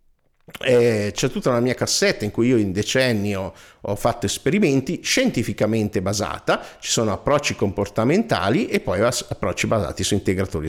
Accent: native